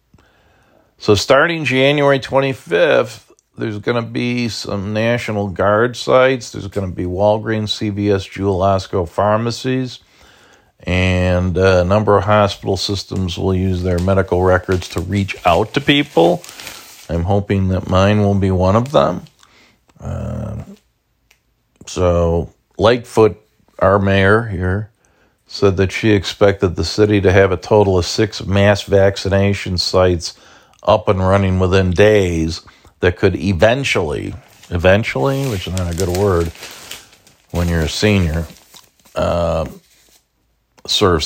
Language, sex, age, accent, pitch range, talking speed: English, male, 50-69, American, 95-110 Hz, 130 wpm